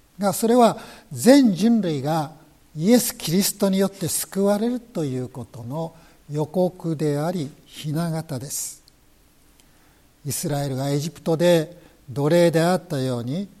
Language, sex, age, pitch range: Japanese, male, 60-79, 140-205 Hz